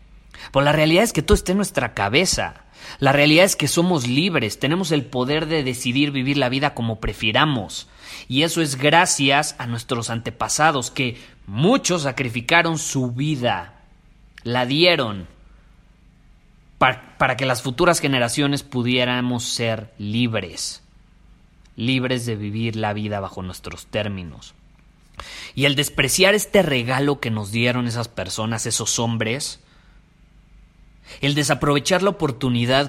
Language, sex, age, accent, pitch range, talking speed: Spanish, male, 30-49, Mexican, 115-150 Hz, 130 wpm